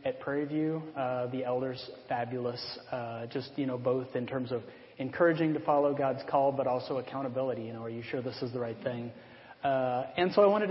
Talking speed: 215 wpm